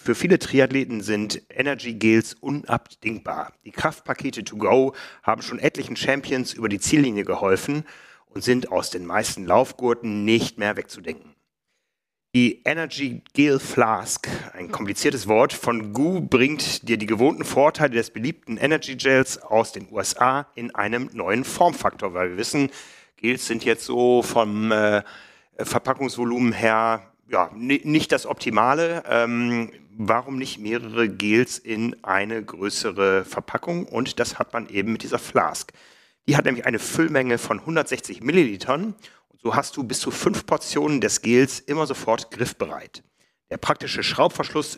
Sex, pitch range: male, 110-135 Hz